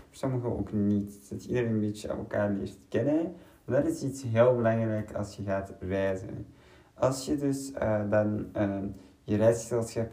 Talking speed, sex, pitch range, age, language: 180 wpm, male, 100-115 Hz, 20-39, Dutch